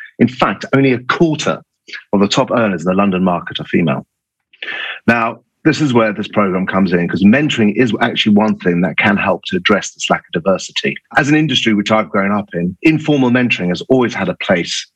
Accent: British